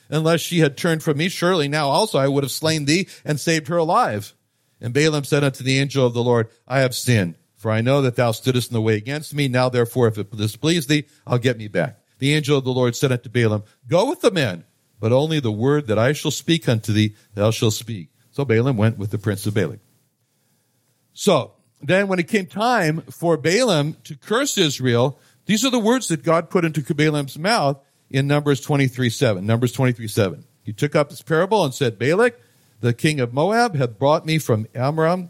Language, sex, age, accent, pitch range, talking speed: English, male, 60-79, American, 120-160 Hz, 220 wpm